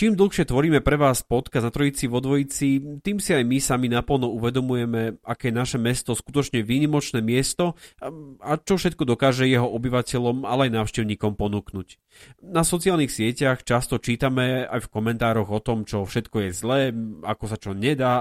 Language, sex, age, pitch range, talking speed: Slovak, male, 30-49, 110-145 Hz, 170 wpm